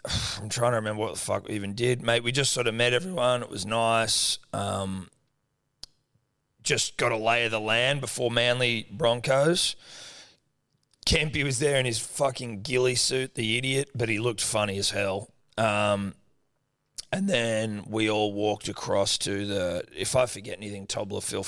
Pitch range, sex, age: 105-125 Hz, male, 30-49